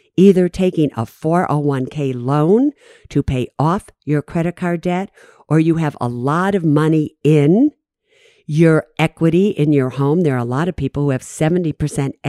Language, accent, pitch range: English, American, 135-175 Hz